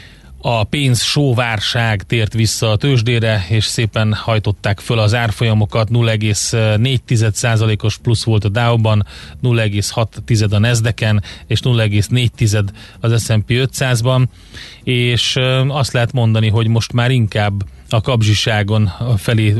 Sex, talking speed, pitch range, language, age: male, 115 wpm, 105-125 Hz, Hungarian, 30-49